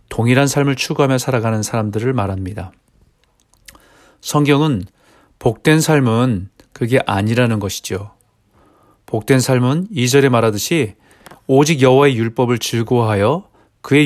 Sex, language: male, Korean